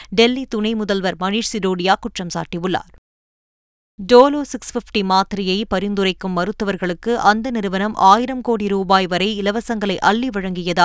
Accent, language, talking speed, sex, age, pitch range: native, Tamil, 115 wpm, female, 20-39, 185-230 Hz